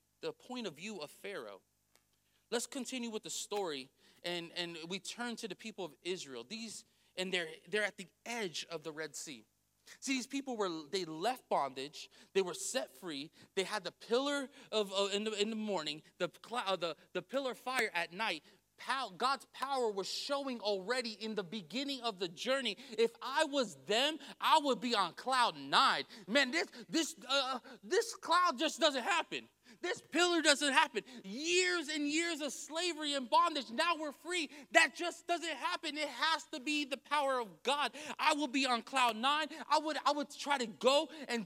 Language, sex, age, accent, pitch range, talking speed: English, male, 30-49, American, 190-290 Hz, 190 wpm